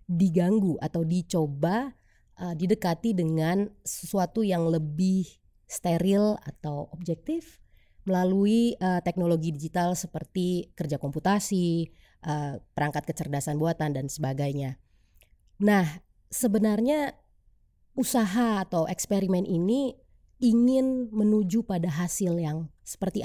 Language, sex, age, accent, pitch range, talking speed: Indonesian, female, 20-39, native, 155-210 Hz, 95 wpm